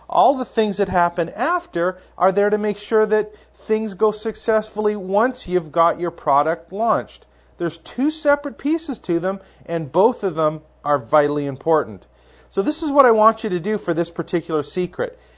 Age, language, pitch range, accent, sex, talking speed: 40-59, English, 160-220 Hz, American, male, 185 wpm